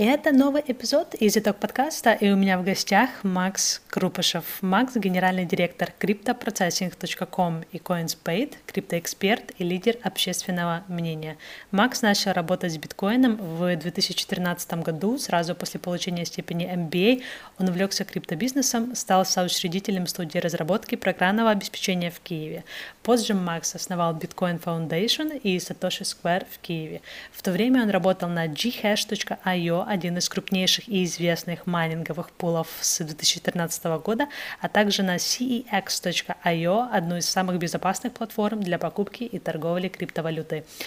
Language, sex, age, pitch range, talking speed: Ukrainian, female, 20-39, 175-205 Hz, 130 wpm